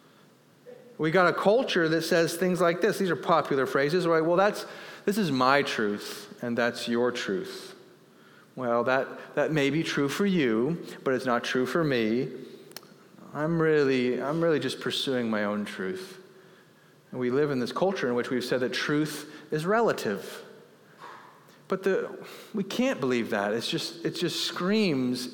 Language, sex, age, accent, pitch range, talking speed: English, male, 40-59, American, 140-200 Hz, 170 wpm